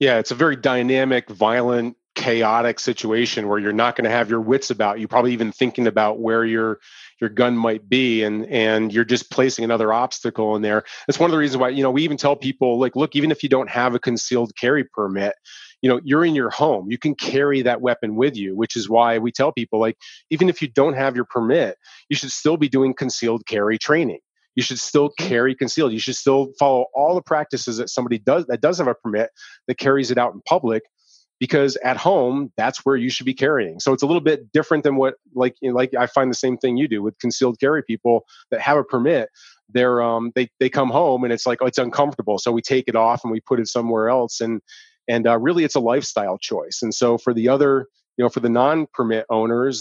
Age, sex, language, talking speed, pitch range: 30-49, male, English, 240 wpm, 115-135 Hz